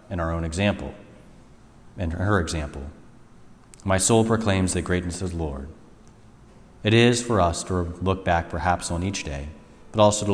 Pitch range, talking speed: 80-95 Hz, 170 wpm